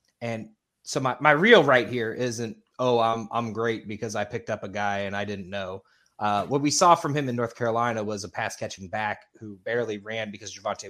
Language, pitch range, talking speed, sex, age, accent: English, 105-120 Hz, 225 wpm, male, 20-39, American